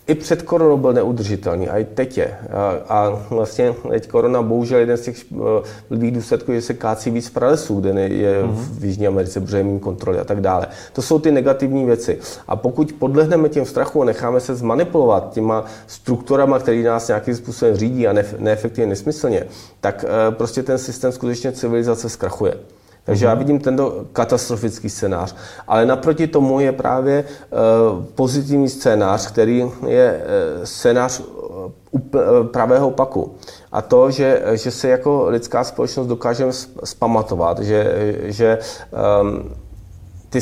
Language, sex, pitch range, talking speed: Czech, male, 105-130 Hz, 145 wpm